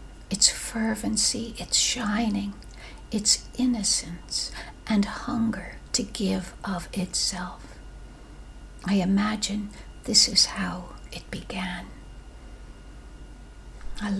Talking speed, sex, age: 85 wpm, female, 60-79